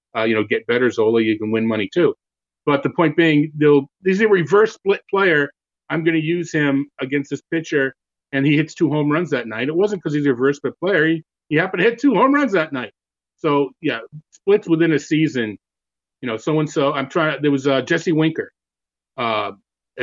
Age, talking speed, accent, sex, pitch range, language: 40-59, 220 wpm, American, male, 125-165 Hz, English